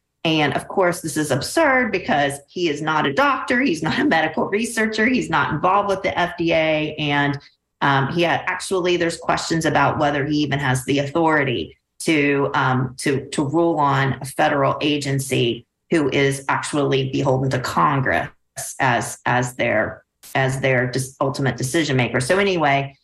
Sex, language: female, English